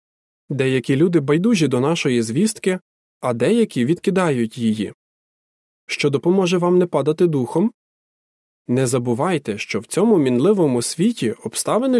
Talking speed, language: 120 wpm, Ukrainian